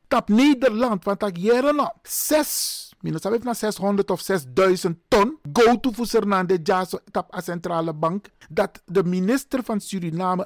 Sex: male